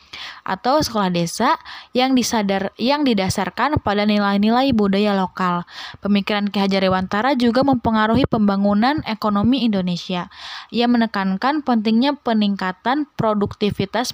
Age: 20-39